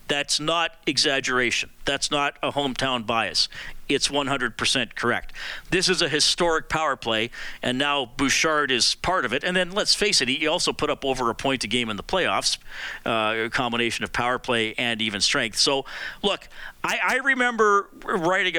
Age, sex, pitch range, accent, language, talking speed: 40-59, male, 125-160 Hz, American, English, 180 wpm